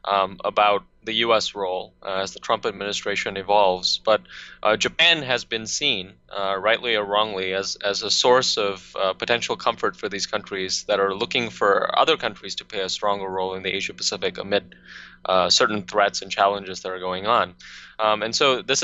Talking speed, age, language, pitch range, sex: 195 wpm, 20-39, English, 95-110 Hz, male